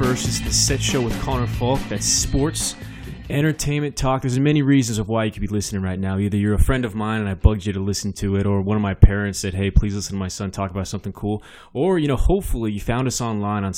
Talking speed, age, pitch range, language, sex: 275 wpm, 20-39, 100-120 Hz, English, male